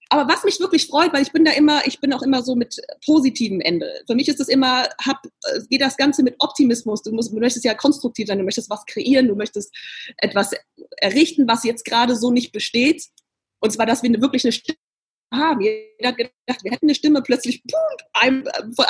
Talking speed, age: 220 wpm, 20-39